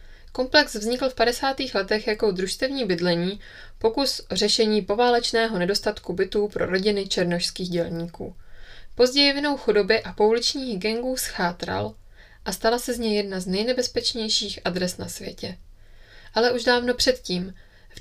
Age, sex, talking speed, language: 20-39, female, 135 wpm, Czech